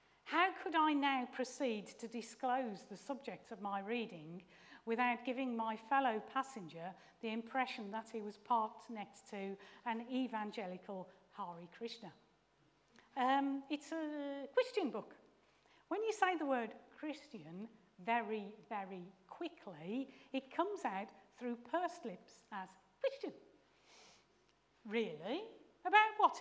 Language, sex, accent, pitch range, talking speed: English, female, British, 205-270 Hz, 125 wpm